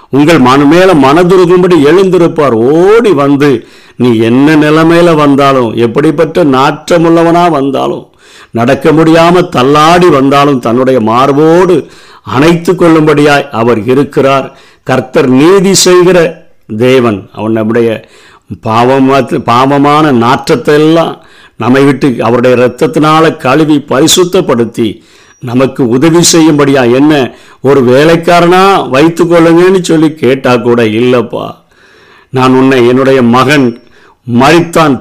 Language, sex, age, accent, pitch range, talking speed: Tamil, male, 50-69, native, 125-165 Hz, 95 wpm